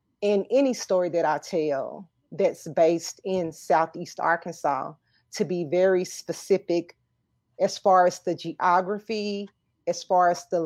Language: English